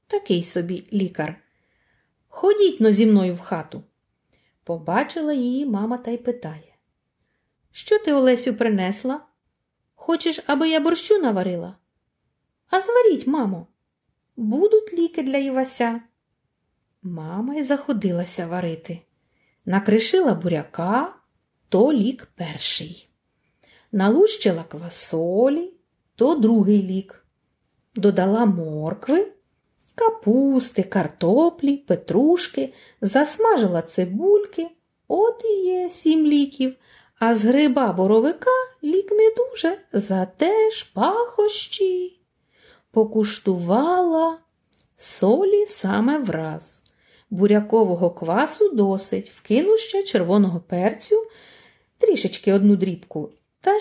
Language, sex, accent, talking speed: Ukrainian, female, native, 90 wpm